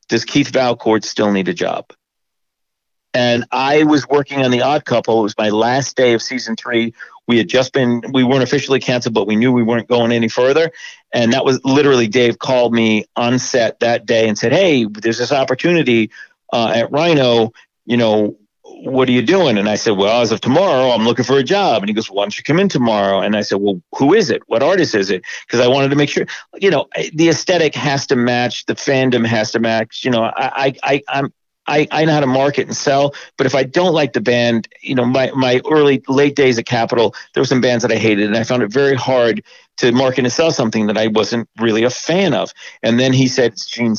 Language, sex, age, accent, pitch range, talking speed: English, male, 40-59, American, 110-130 Hz, 240 wpm